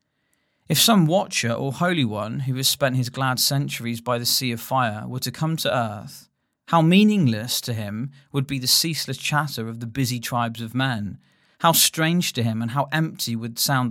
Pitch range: 120-155 Hz